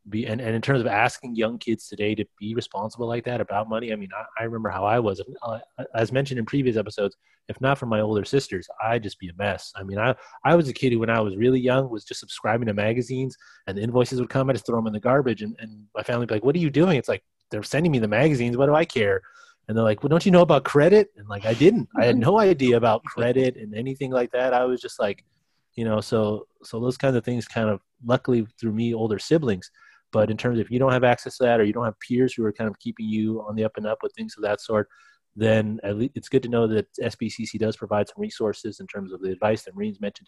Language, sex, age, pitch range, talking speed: English, male, 30-49, 110-130 Hz, 285 wpm